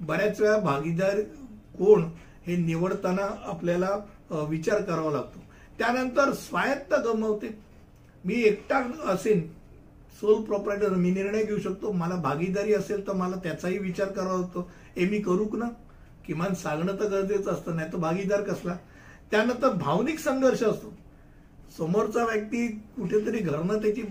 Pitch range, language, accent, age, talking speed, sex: 190-230 Hz, Hindi, native, 60-79, 95 wpm, male